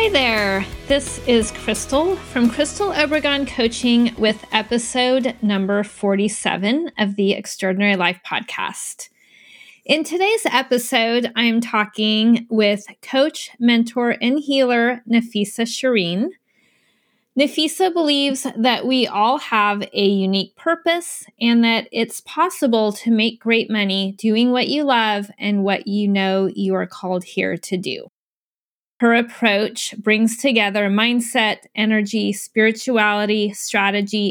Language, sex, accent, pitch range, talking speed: English, female, American, 205-255 Hz, 120 wpm